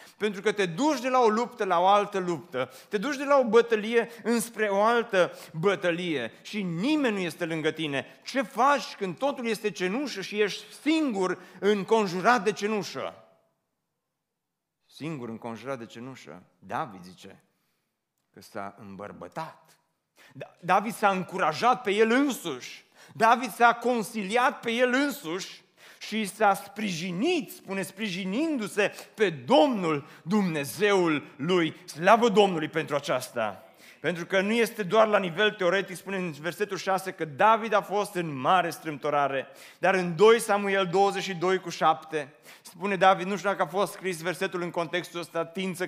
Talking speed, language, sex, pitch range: 145 wpm, Romanian, male, 170-210 Hz